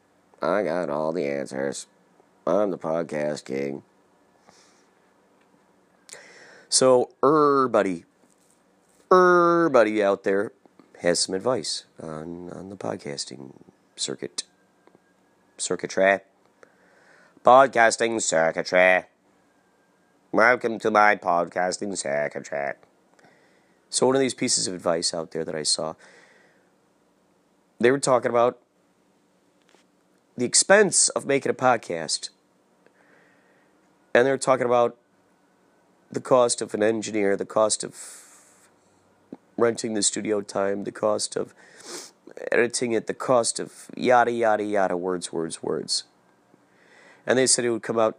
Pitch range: 85-125 Hz